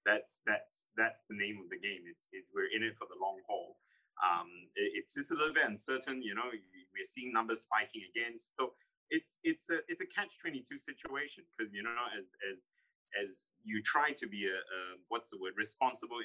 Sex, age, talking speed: male, 30-49, 215 wpm